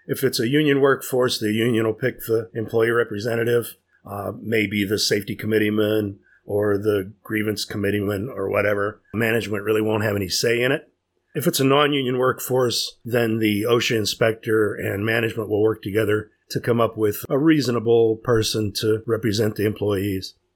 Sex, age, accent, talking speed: male, 40-59, American, 165 wpm